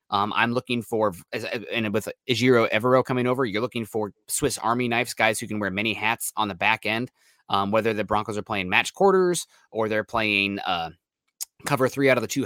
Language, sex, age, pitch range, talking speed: English, male, 20-39, 105-140 Hz, 205 wpm